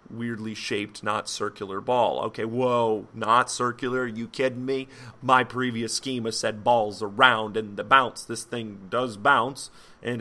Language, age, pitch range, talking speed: English, 30-49, 110-135 Hz, 160 wpm